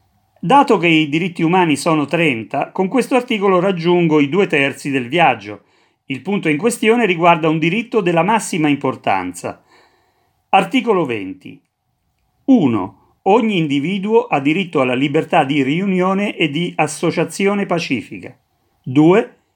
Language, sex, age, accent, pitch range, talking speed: Italian, male, 40-59, native, 140-185 Hz, 130 wpm